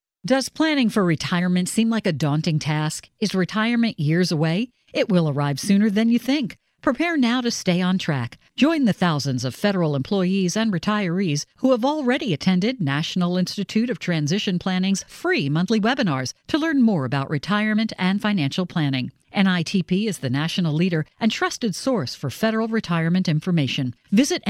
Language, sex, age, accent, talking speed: English, female, 50-69, American, 165 wpm